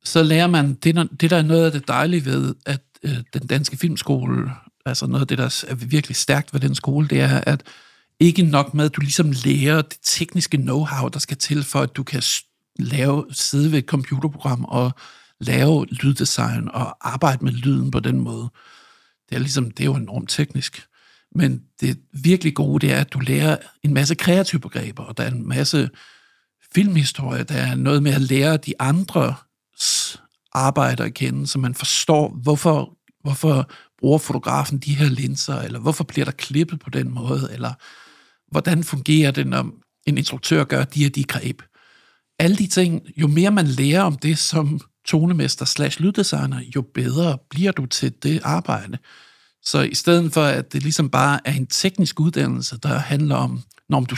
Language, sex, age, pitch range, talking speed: Danish, male, 60-79, 135-160 Hz, 185 wpm